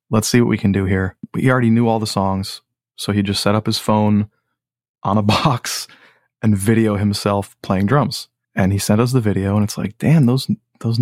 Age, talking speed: 20-39, 220 wpm